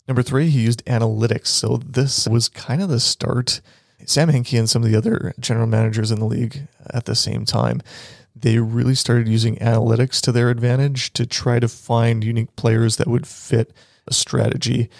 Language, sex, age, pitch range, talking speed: English, male, 30-49, 115-130 Hz, 190 wpm